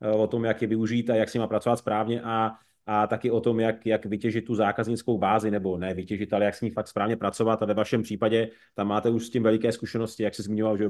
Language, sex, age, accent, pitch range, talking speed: Czech, male, 30-49, native, 105-115 Hz, 260 wpm